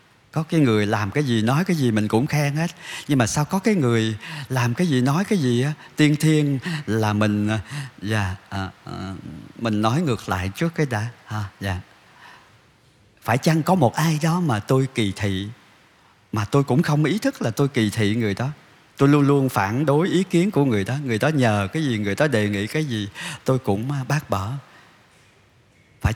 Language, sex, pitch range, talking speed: Vietnamese, male, 105-140 Hz, 205 wpm